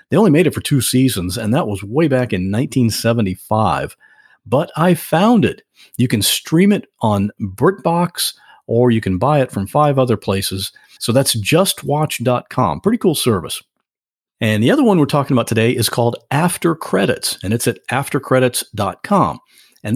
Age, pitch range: 50-69, 115-180 Hz